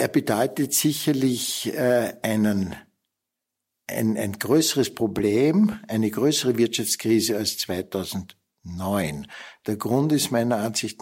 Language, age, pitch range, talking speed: German, 60-79, 110-130 Hz, 95 wpm